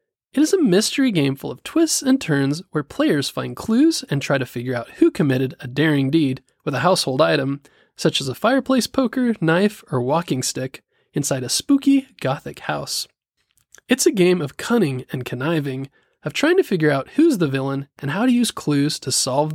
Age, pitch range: 20-39, 135-225 Hz